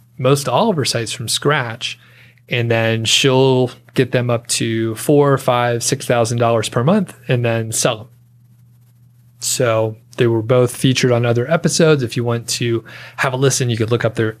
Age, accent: 30-49, American